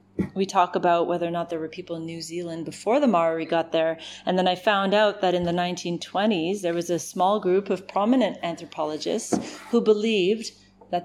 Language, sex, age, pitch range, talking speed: English, female, 30-49, 165-210 Hz, 200 wpm